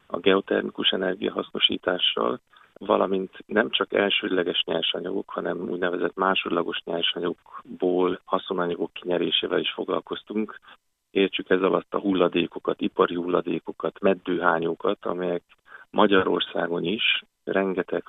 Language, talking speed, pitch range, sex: Hungarian, 95 wpm, 85-90 Hz, male